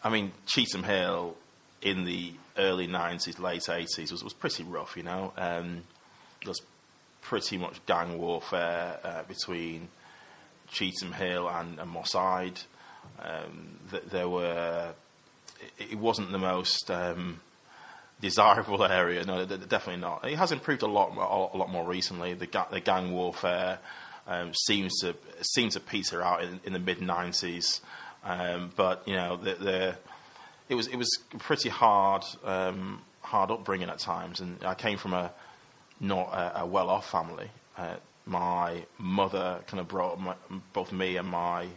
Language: English